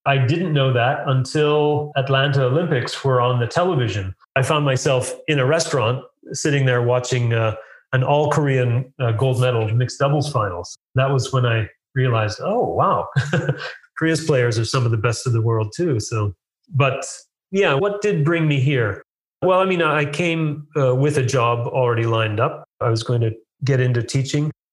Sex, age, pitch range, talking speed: male, 30-49, 115-140 Hz, 175 wpm